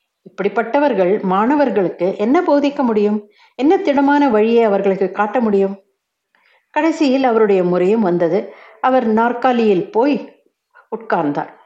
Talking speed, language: 100 wpm, Tamil